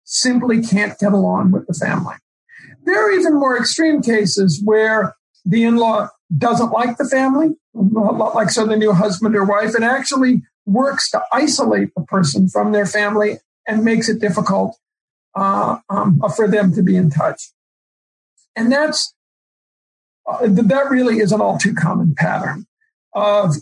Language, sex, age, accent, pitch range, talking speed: English, male, 50-69, American, 200-265 Hz, 155 wpm